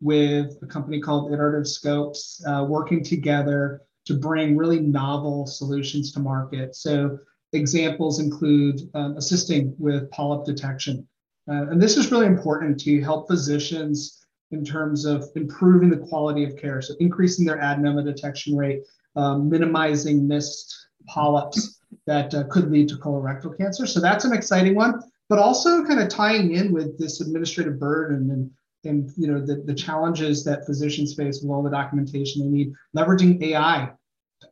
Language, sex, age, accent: English, male, 30-49, American